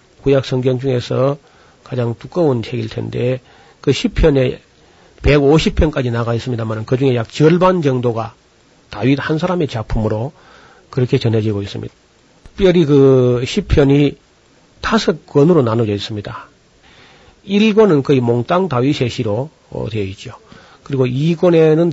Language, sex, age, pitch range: Korean, male, 40-59, 120-155 Hz